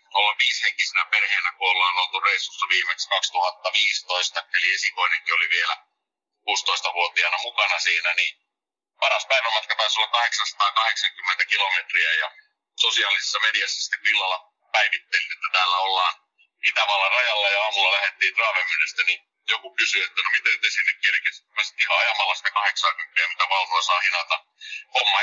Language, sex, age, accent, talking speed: Finnish, male, 50-69, native, 130 wpm